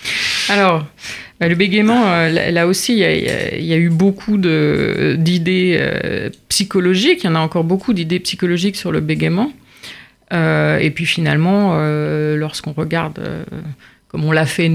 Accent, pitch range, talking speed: French, 155-195 Hz, 165 wpm